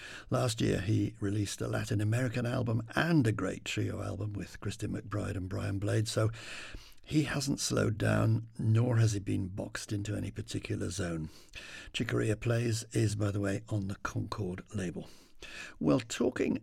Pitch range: 100-115 Hz